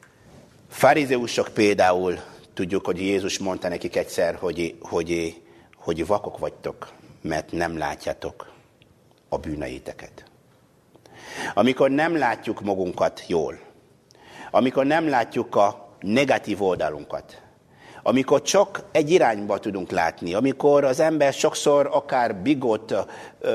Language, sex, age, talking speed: Hungarian, male, 60-79, 105 wpm